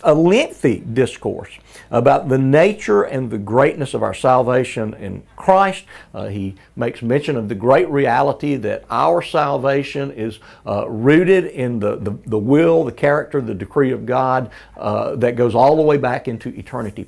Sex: male